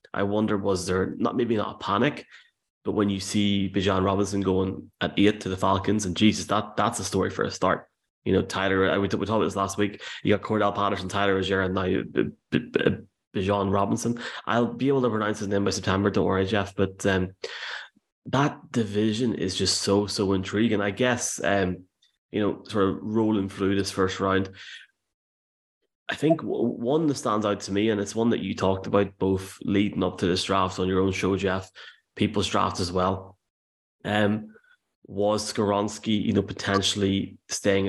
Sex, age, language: male, 20-39, English